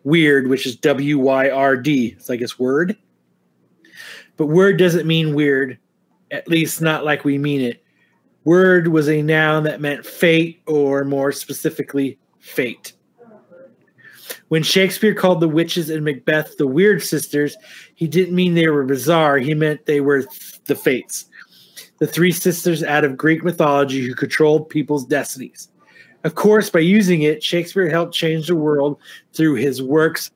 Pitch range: 140-170 Hz